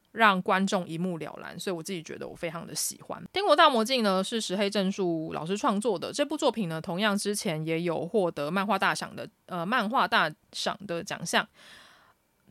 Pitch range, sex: 175-225 Hz, female